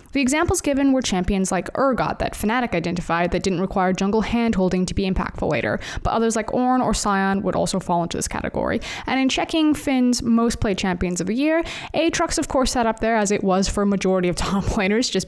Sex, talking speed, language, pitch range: female, 225 wpm, English, 190-250 Hz